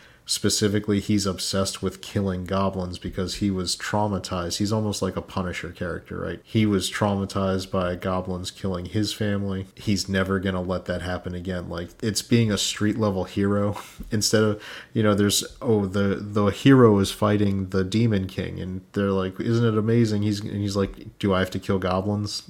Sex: male